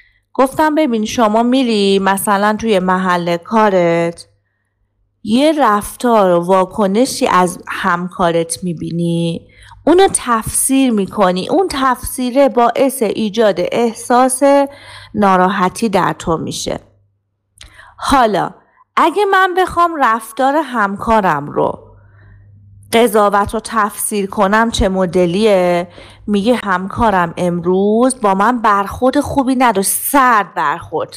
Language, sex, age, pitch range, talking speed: Persian, female, 30-49, 185-250 Hz, 95 wpm